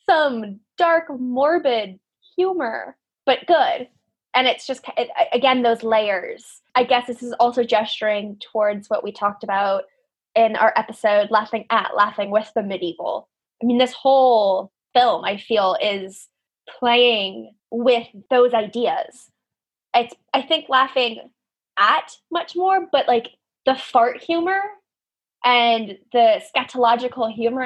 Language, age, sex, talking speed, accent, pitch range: English, 10-29, female, 130 wpm, American, 215-255 Hz